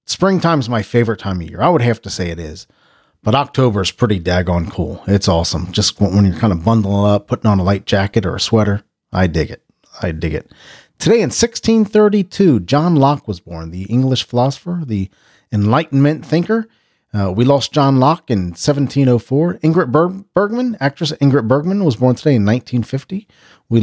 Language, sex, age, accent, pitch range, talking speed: English, male, 40-59, American, 110-155 Hz, 185 wpm